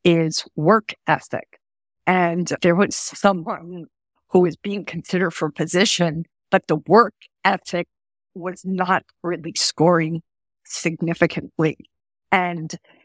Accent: American